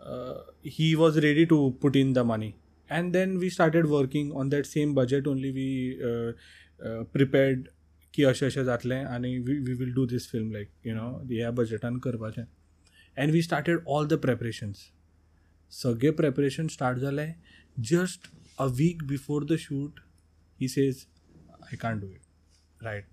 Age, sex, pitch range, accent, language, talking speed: 20-39, male, 115-140 Hz, native, Hindi, 175 wpm